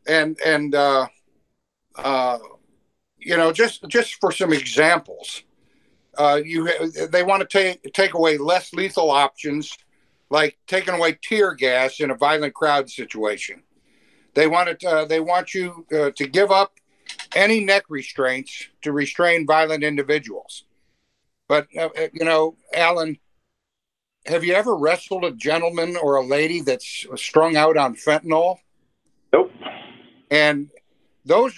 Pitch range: 145-185 Hz